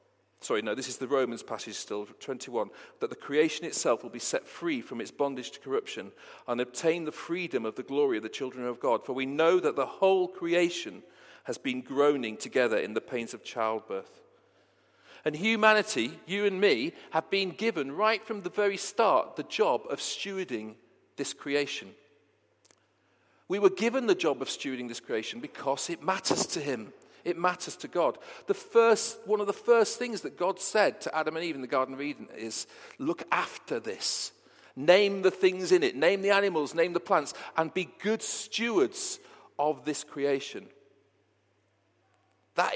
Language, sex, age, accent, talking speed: English, male, 50-69, British, 180 wpm